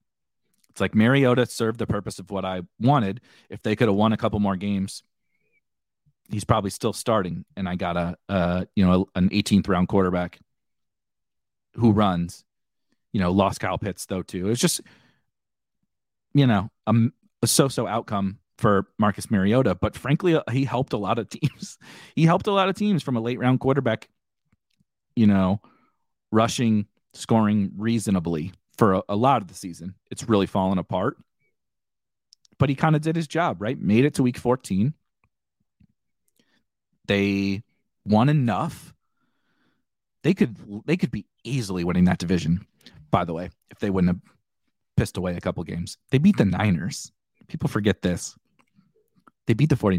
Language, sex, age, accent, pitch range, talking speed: English, male, 40-59, American, 95-130 Hz, 165 wpm